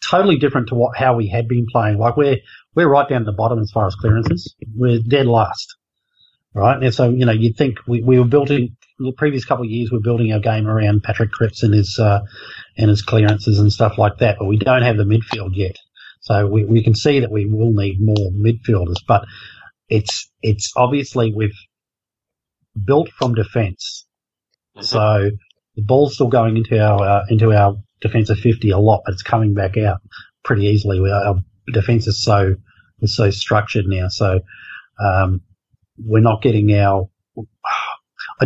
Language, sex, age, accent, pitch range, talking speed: English, male, 30-49, Australian, 100-120 Hz, 190 wpm